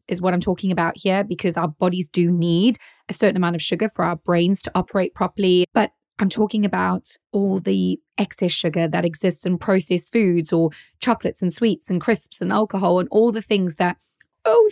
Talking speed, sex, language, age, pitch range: 200 wpm, female, English, 20-39, 180-225 Hz